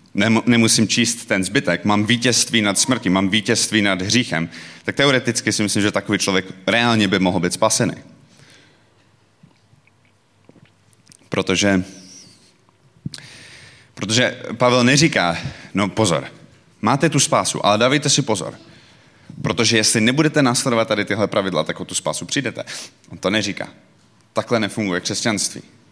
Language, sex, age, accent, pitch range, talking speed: Czech, male, 30-49, native, 95-125 Hz, 125 wpm